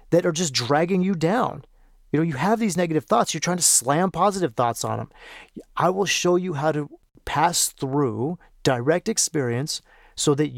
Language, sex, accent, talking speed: English, male, American, 185 wpm